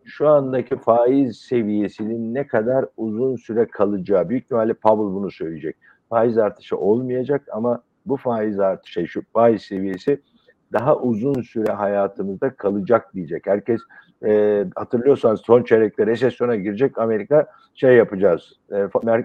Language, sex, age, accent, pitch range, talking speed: Turkish, male, 60-79, native, 105-135 Hz, 130 wpm